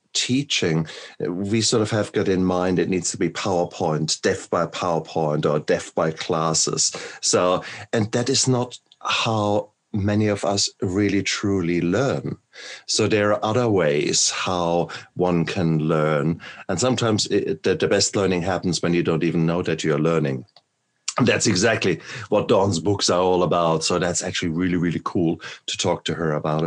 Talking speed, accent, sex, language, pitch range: 170 wpm, German, male, English, 80-100 Hz